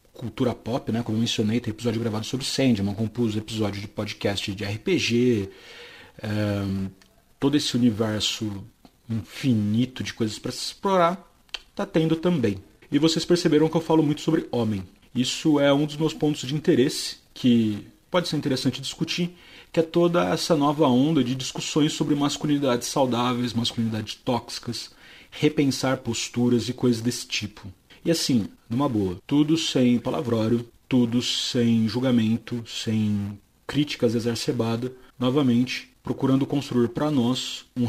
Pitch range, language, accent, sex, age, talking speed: 110-140 Hz, Portuguese, Brazilian, male, 40-59, 145 wpm